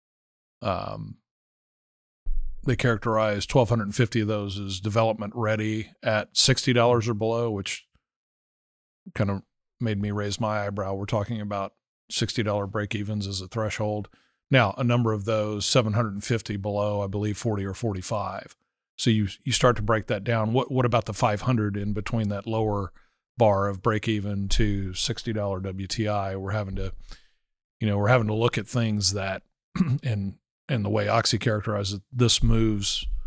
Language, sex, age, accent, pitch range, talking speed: English, male, 40-59, American, 100-115 Hz, 155 wpm